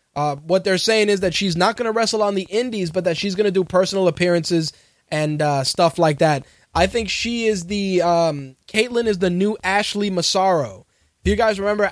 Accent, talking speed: American, 215 wpm